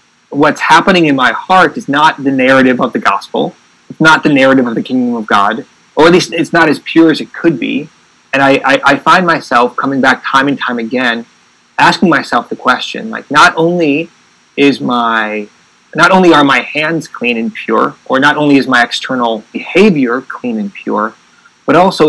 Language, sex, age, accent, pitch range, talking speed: English, male, 30-49, American, 130-170 Hz, 200 wpm